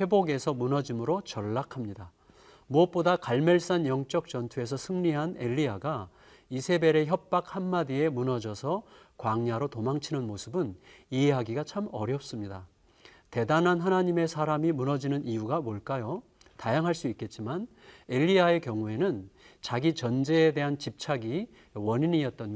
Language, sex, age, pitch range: Korean, male, 40-59, 120-175 Hz